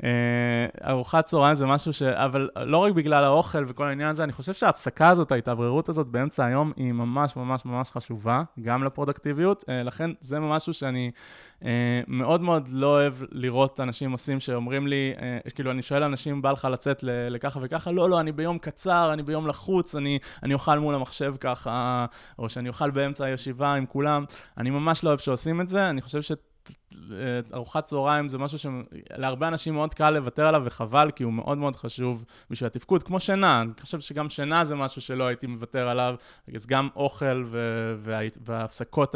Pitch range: 120-145 Hz